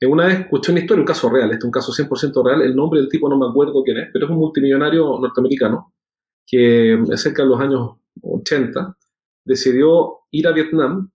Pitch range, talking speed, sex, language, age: 120-165 Hz, 200 wpm, male, Spanish, 30-49